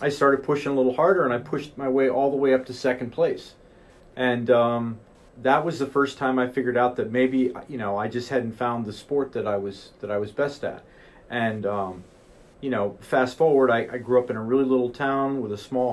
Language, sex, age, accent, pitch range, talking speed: English, male, 40-59, American, 115-135 Hz, 240 wpm